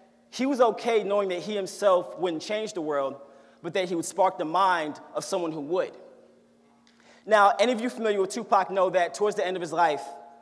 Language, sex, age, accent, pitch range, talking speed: English, male, 30-49, American, 185-235 Hz, 215 wpm